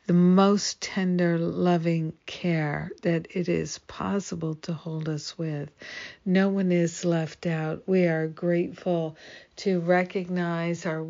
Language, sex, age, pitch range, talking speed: English, female, 60-79, 165-180 Hz, 130 wpm